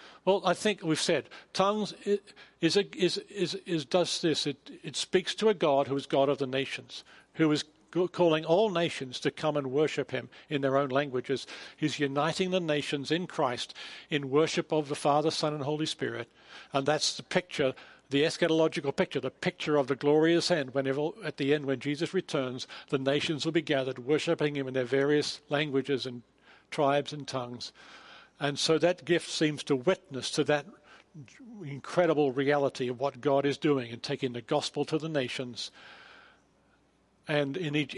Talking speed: 180 wpm